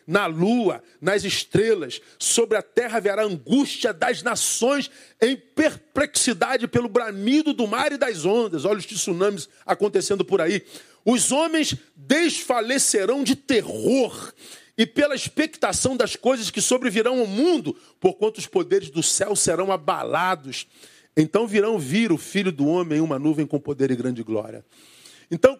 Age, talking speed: 40-59, 150 wpm